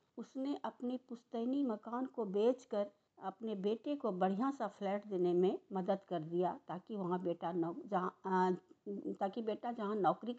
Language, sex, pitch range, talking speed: English, female, 200-270 Hz, 145 wpm